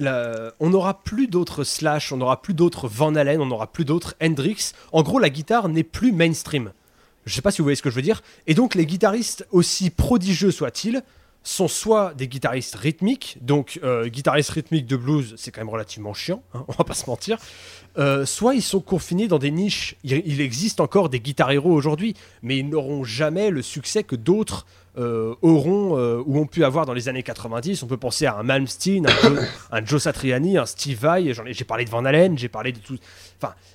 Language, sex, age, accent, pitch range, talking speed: French, male, 20-39, French, 120-170 Hz, 220 wpm